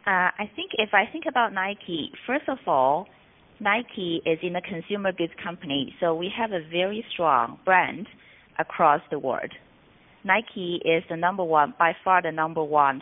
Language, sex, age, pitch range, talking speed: English, female, 30-49, 160-200 Hz, 175 wpm